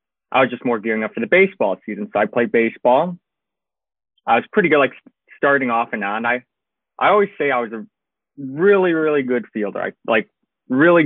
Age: 20-39